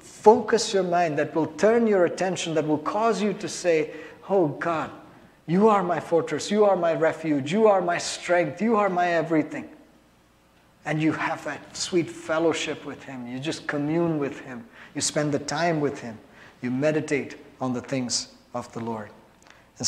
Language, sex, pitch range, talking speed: English, male, 130-160 Hz, 180 wpm